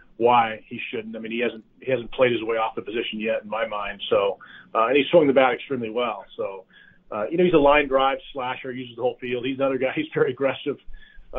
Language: English